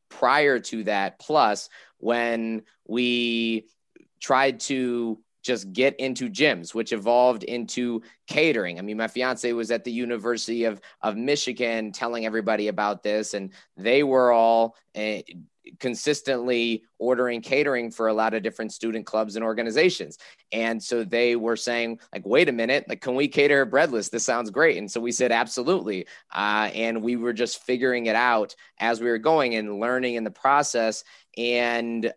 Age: 20-39